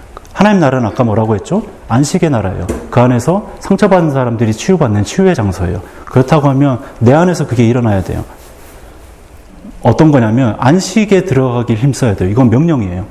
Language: Korean